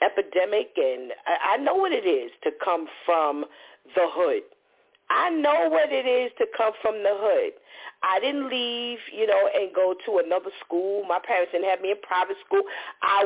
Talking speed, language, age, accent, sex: 185 wpm, English, 40-59, American, female